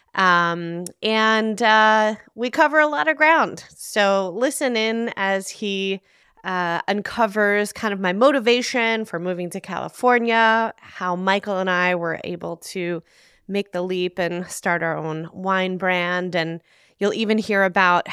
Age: 20-39